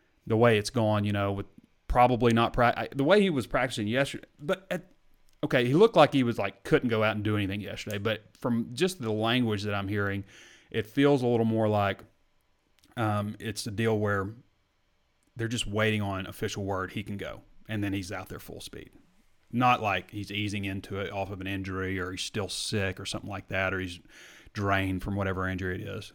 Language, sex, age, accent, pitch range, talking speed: English, male, 30-49, American, 100-125 Hz, 210 wpm